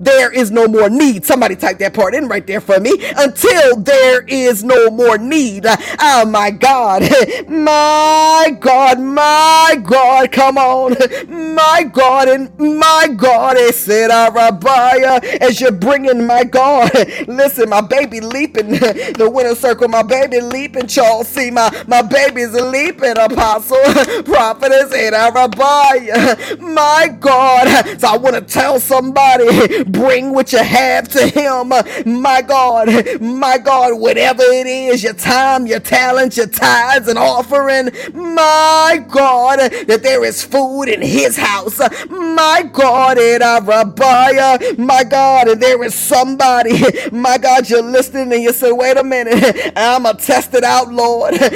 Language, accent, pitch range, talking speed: English, American, 240-275 Hz, 150 wpm